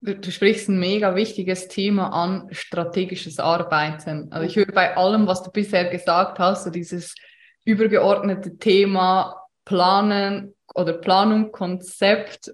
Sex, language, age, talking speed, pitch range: female, German, 20-39, 130 wpm, 180-215 Hz